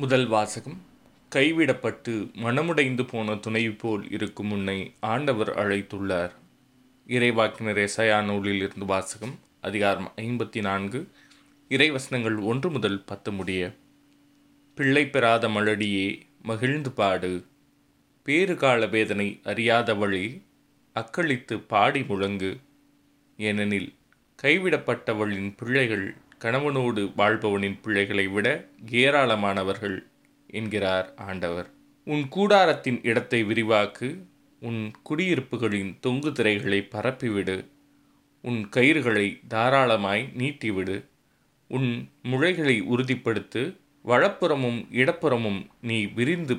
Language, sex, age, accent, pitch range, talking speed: Tamil, male, 20-39, native, 100-130 Hz, 80 wpm